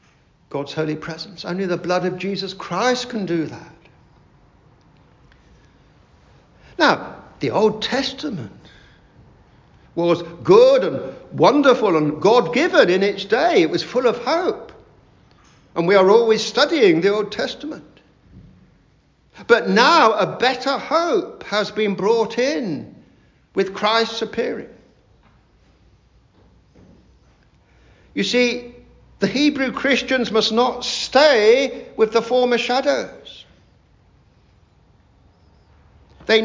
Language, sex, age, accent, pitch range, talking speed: English, male, 60-79, British, 175-245 Hz, 105 wpm